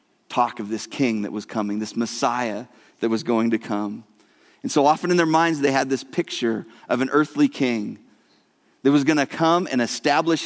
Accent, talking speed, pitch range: American, 200 wpm, 120-160 Hz